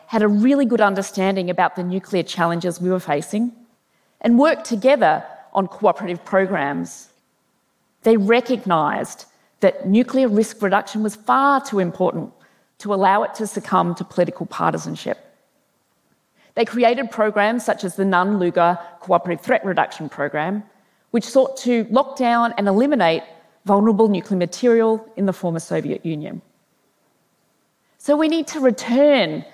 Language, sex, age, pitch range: Korean, female, 40-59, 185-245 Hz